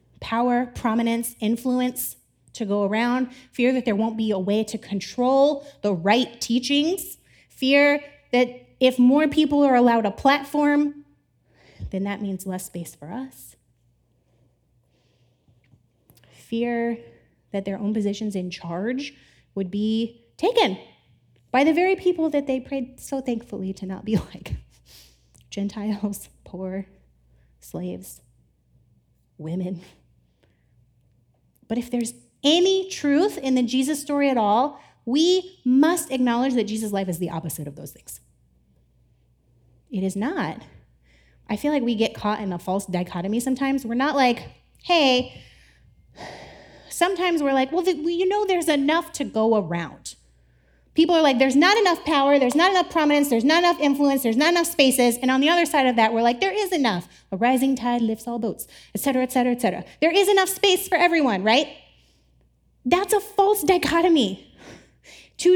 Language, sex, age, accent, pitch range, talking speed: English, female, 30-49, American, 190-295 Hz, 155 wpm